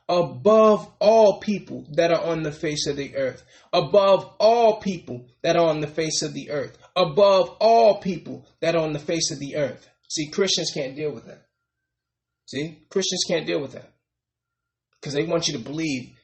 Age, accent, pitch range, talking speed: 20-39, American, 145-210 Hz, 190 wpm